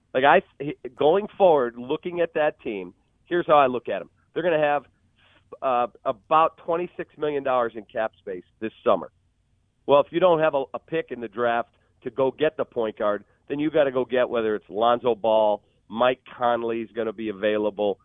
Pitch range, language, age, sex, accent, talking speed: 110-135 Hz, English, 40-59, male, American, 205 wpm